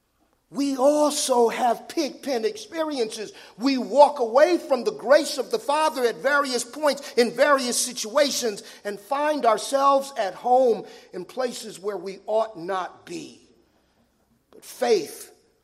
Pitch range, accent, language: 215-300 Hz, American, English